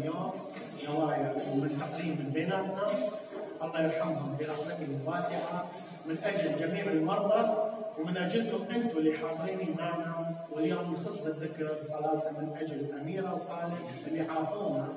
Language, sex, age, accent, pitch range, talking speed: English, male, 30-49, Lebanese, 155-200 Hz, 90 wpm